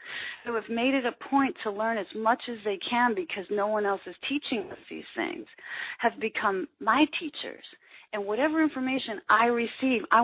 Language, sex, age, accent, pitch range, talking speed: English, female, 40-59, American, 210-280 Hz, 190 wpm